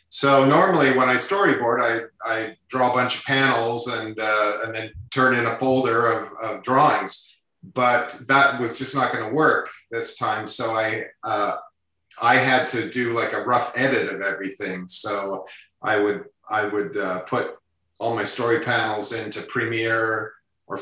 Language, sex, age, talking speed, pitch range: English, male, 40-59, 175 wpm, 105-130 Hz